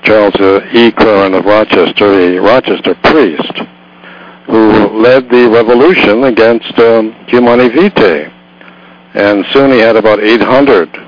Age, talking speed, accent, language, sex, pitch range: 60-79, 125 wpm, American, English, male, 95-120 Hz